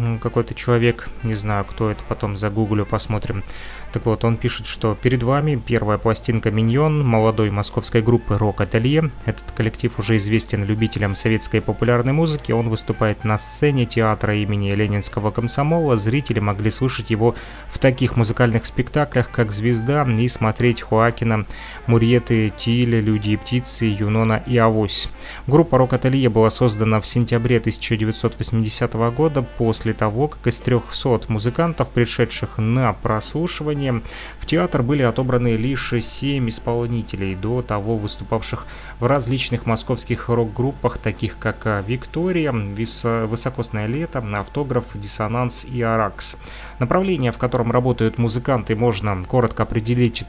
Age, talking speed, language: 20-39, 130 wpm, Russian